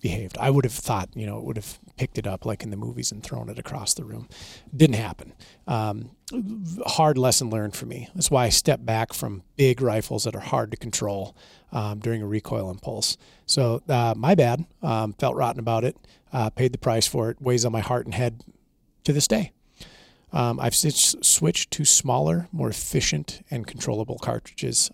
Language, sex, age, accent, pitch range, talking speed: English, male, 40-59, American, 110-140 Hz, 200 wpm